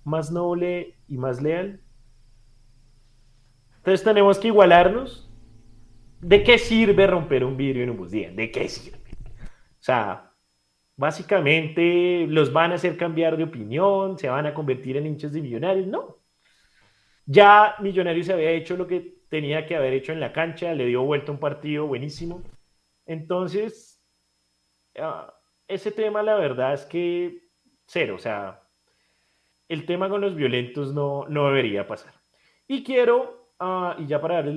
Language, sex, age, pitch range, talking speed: Spanish, male, 30-49, 115-175 Hz, 155 wpm